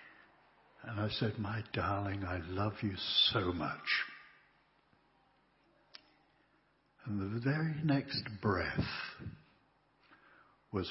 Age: 60-79